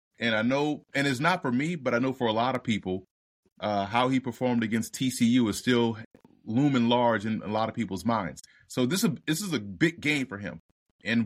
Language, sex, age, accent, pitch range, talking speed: English, male, 30-49, American, 115-145 Hz, 230 wpm